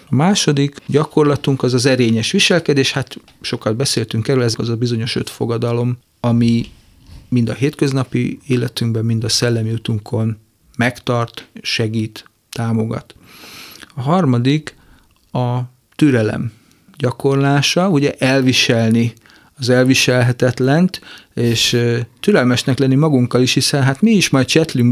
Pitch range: 120-145 Hz